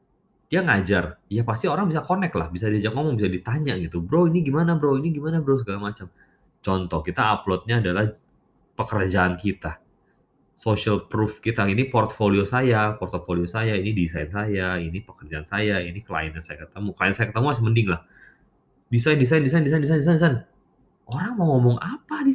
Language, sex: Indonesian, male